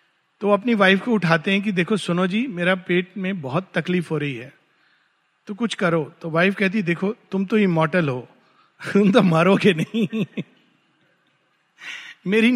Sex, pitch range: male, 180-240 Hz